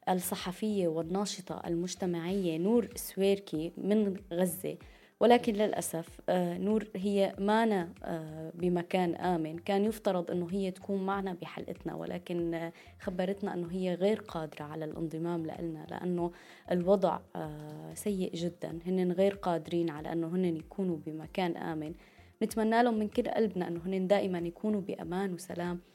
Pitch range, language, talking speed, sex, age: 170-200 Hz, Arabic, 125 wpm, female, 20-39